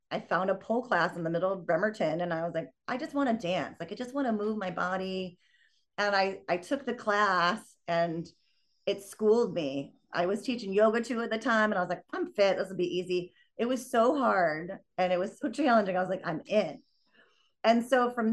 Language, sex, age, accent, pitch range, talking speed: English, female, 30-49, American, 175-230 Hz, 235 wpm